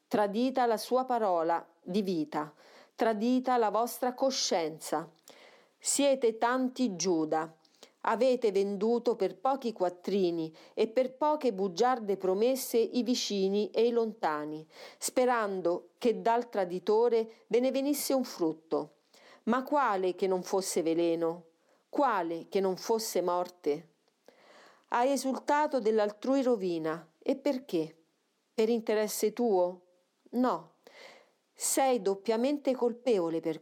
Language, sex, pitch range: Italian, female, 175-250 Hz